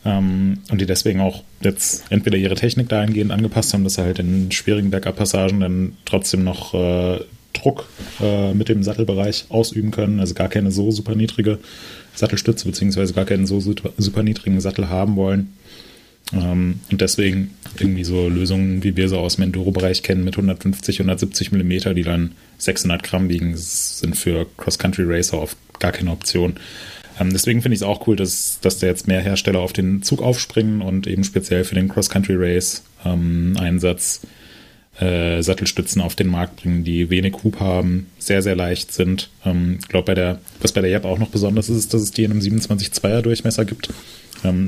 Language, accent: German, German